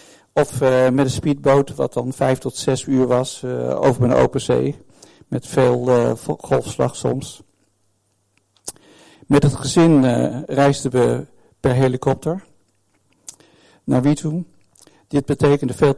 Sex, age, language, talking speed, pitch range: male, 50-69, Dutch, 130 wpm, 125-140 Hz